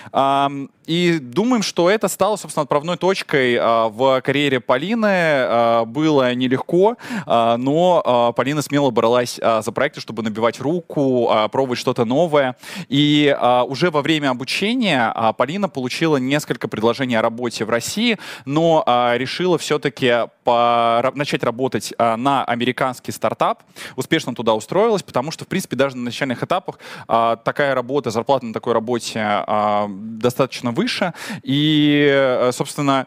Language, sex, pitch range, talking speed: Russian, male, 115-150 Hz, 120 wpm